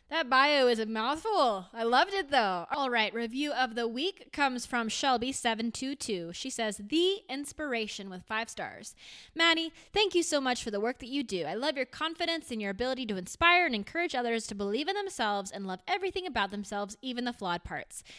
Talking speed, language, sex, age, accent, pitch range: 205 wpm, English, female, 20-39, American, 210-285 Hz